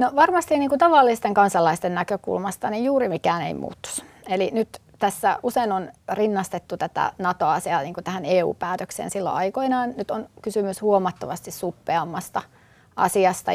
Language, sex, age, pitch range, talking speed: Finnish, female, 30-49, 180-215 Hz, 135 wpm